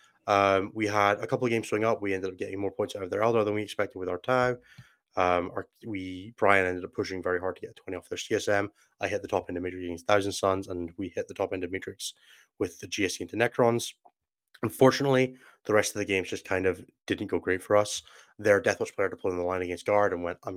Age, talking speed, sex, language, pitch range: 20-39, 265 wpm, male, English, 90-105 Hz